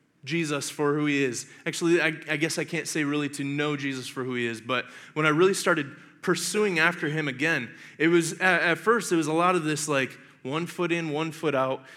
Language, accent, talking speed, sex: English, American, 235 wpm, male